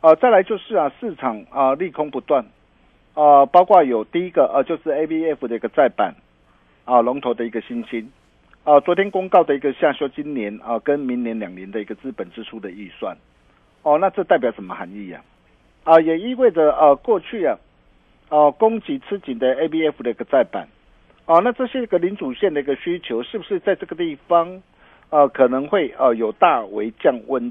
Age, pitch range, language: 50-69, 125-185 Hz, Chinese